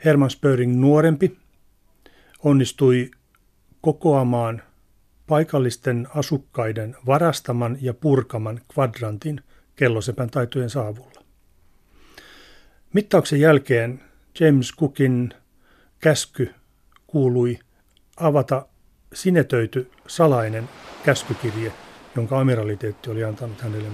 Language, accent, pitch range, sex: Finnish, native, 115-145 Hz, male